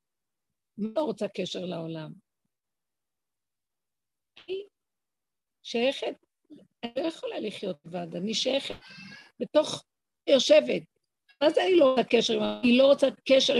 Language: Hebrew